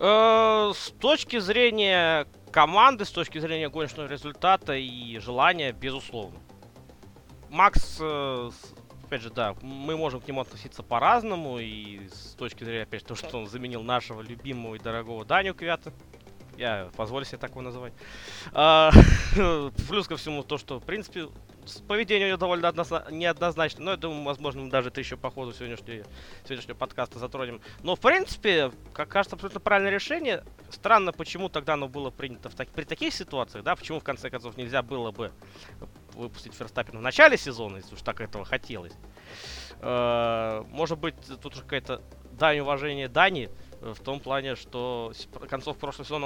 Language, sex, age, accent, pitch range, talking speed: Russian, male, 20-39, native, 115-160 Hz, 160 wpm